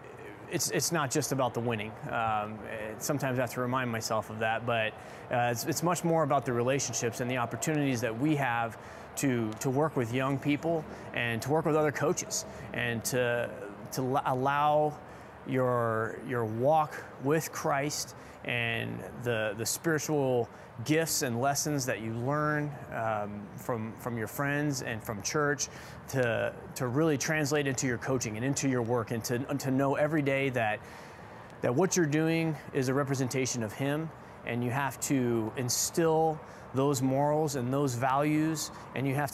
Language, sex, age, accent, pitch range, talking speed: English, male, 30-49, American, 120-150 Hz, 170 wpm